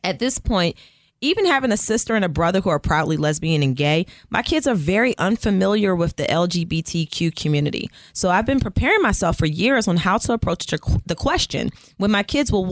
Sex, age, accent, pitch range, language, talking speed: female, 20-39, American, 165-240 Hz, English, 200 wpm